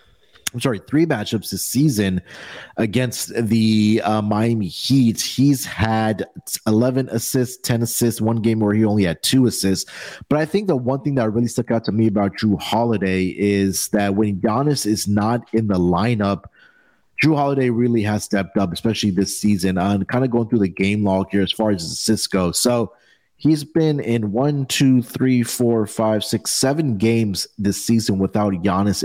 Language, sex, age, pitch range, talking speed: English, male, 30-49, 95-115 Hz, 185 wpm